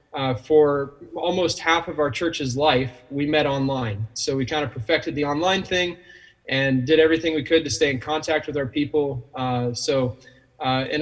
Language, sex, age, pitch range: English, male, 20-39, 130-160 Hz